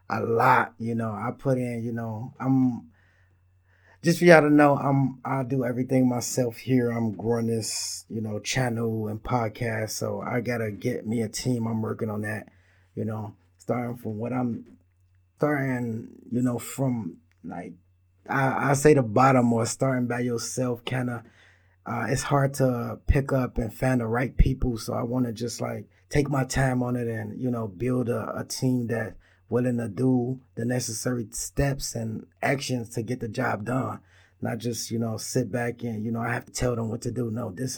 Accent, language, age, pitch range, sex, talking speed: American, English, 20-39, 110-125 Hz, male, 195 wpm